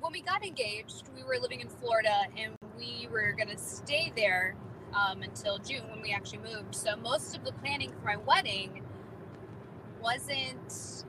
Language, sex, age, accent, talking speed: English, female, 20-39, American, 170 wpm